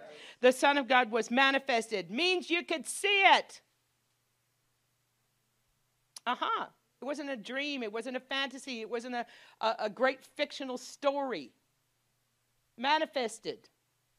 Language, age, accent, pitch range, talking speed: English, 50-69, American, 190-285 Hz, 125 wpm